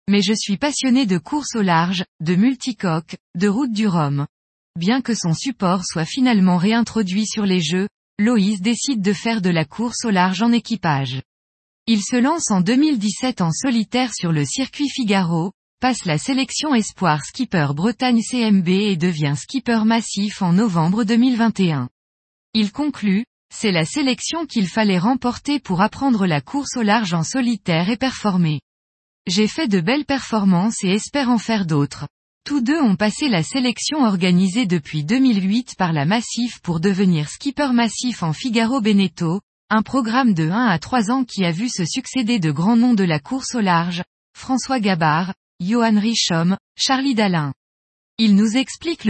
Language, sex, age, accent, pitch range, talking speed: French, female, 20-39, French, 180-250 Hz, 165 wpm